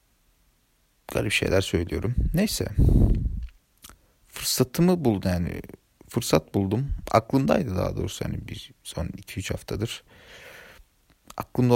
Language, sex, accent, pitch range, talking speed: Turkish, male, native, 95-105 Hz, 90 wpm